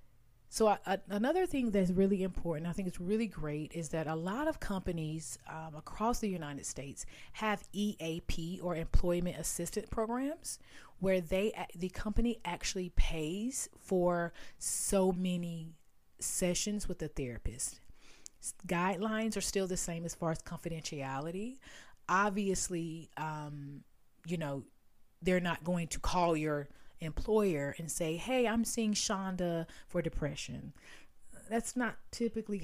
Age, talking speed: 30-49, 135 wpm